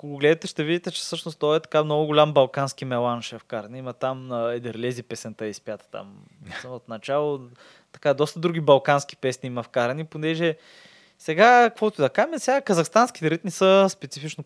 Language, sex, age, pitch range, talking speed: Bulgarian, male, 20-39, 125-160 Hz, 170 wpm